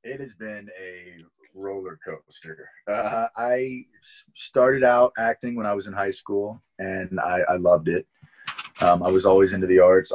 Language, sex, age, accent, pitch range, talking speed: English, male, 30-49, American, 95-125 Hz, 170 wpm